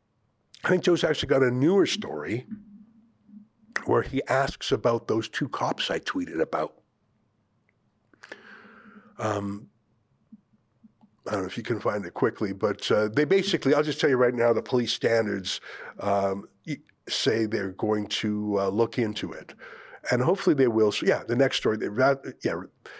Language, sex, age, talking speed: English, male, 50-69, 155 wpm